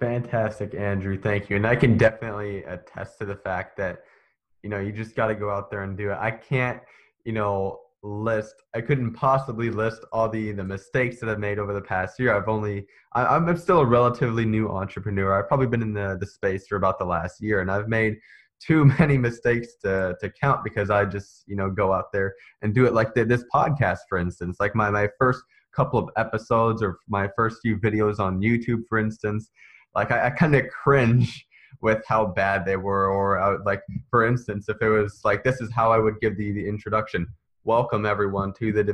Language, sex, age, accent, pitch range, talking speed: English, male, 20-39, American, 100-120 Hz, 215 wpm